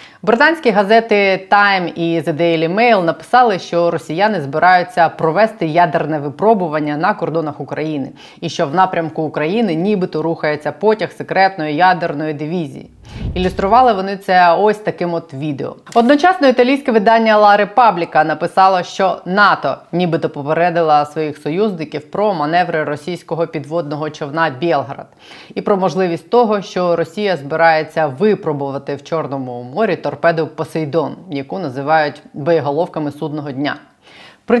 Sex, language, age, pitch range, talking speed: female, Ukrainian, 20-39, 150-190 Hz, 125 wpm